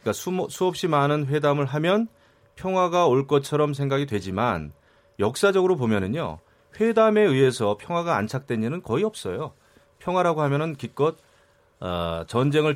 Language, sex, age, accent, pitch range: Korean, male, 30-49, native, 115-160 Hz